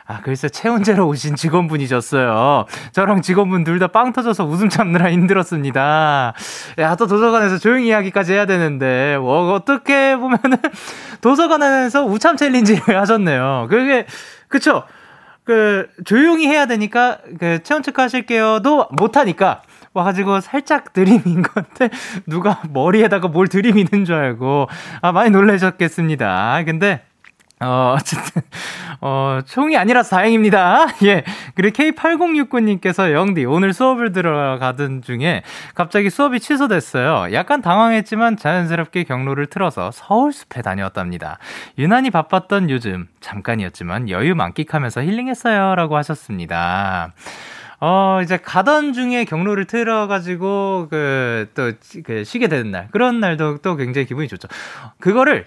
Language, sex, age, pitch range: Korean, male, 20-39, 150-225 Hz